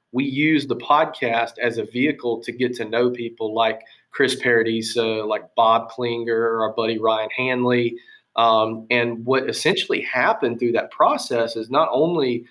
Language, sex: English, male